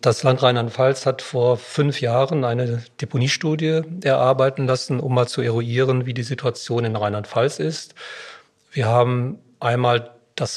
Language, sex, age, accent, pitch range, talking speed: German, male, 40-59, German, 120-145 Hz, 140 wpm